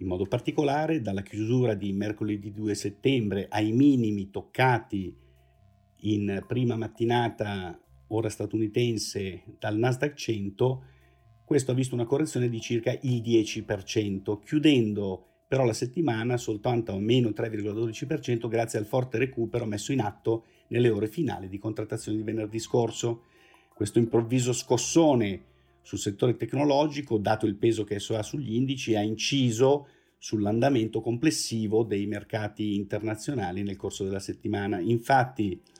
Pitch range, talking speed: 105-125 Hz, 130 wpm